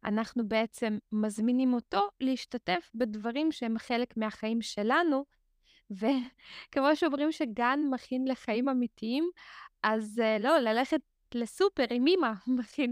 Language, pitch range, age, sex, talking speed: Hebrew, 220-270 Hz, 20-39, female, 110 wpm